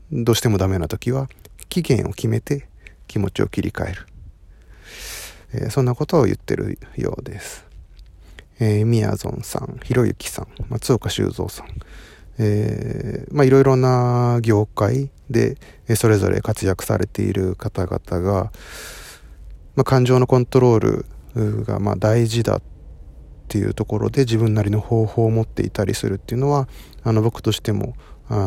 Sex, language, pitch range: male, Japanese, 95-120 Hz